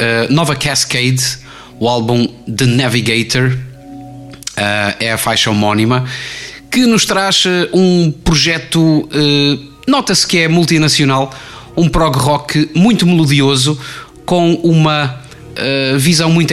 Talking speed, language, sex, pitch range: 100 wpm, Portuguese, male, 115-160 Hz